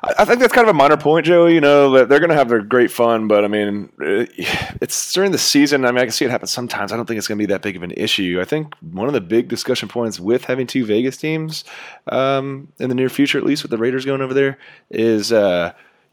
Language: English